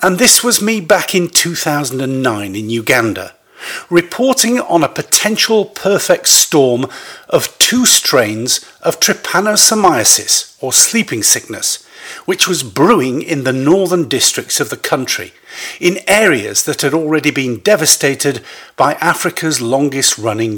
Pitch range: 130-180 Hz